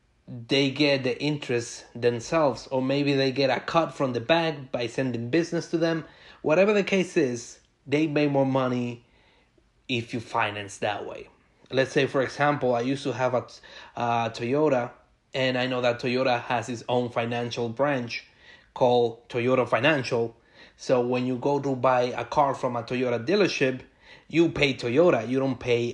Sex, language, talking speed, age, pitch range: male, English, 170 wpm, 30-49, 120-140 Hz